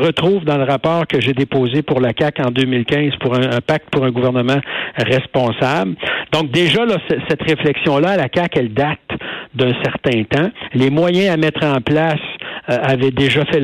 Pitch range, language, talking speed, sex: 130-155 Hz, French, 185 wpm, male